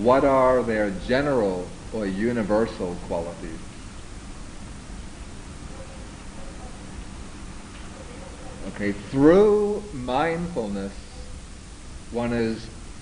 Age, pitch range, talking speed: 50-69, 95-120 Hz, 55 wpm